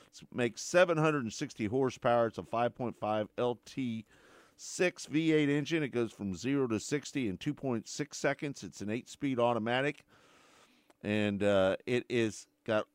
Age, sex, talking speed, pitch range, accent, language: 50-69, male, 125 wpm, 110-145 Hz, American, English